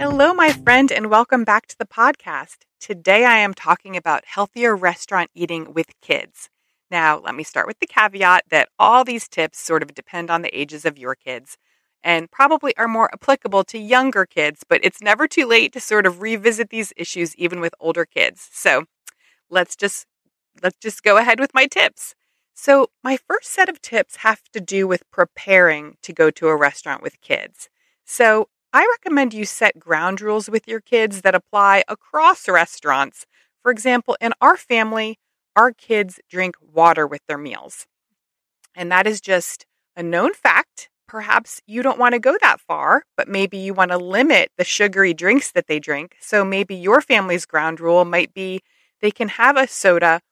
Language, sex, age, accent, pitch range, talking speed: English, female, 30-49, American, 175-245 Hz, 185 wpm